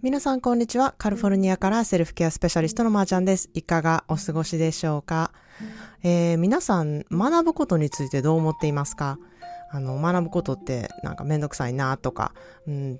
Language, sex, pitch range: Japanese, female, 140-180 Hz